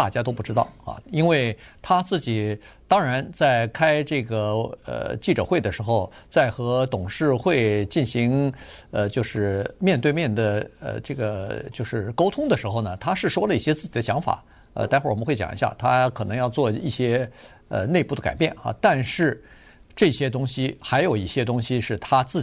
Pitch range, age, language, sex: 110-150 Hz, 50-69, Chinese, male